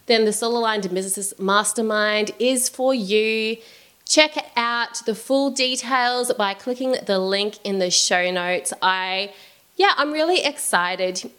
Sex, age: female, 20-39